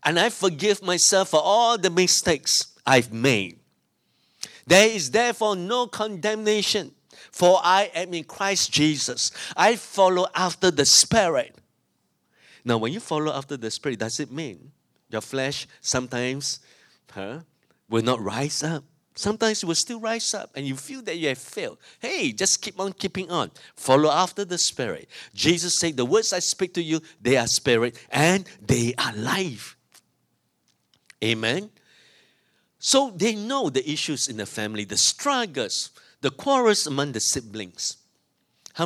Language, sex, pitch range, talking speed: English, male, 125-190 Hz, 150 wpm